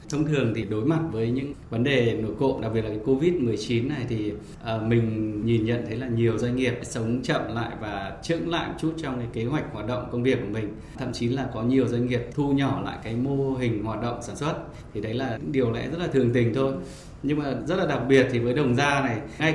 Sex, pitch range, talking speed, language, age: male, 115-140 Hz, 260 wpm, Vietnamese, 20-39